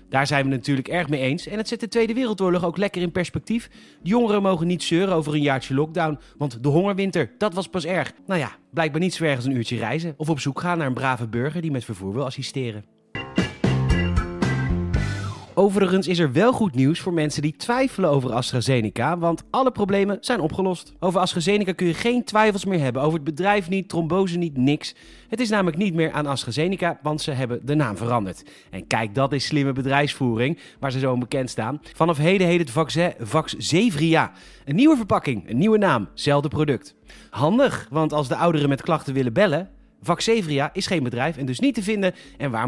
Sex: male